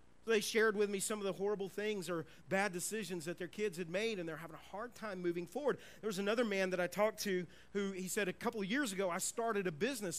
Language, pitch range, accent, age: English, 185-225 Hz, American, 40-59